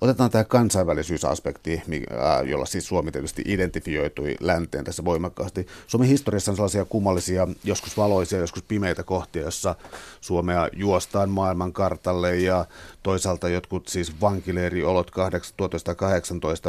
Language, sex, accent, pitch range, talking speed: Finnish, male, native, 85-100 Hz, 110 wpm